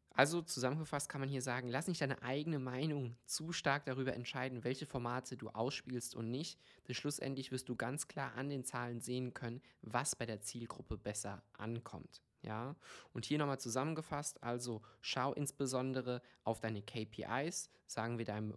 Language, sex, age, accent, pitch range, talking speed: German, male, 20-39, German, 115-135 Hz, 165 wpm